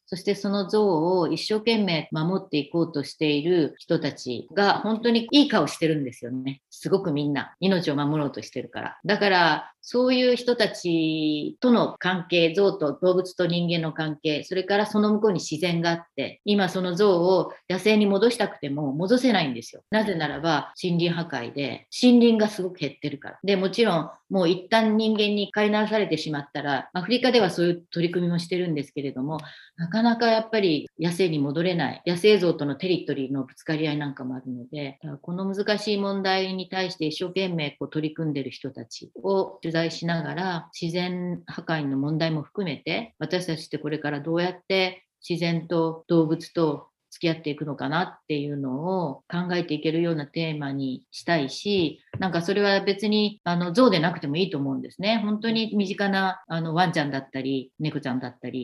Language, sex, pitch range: Japanese, female, 150-195 Hz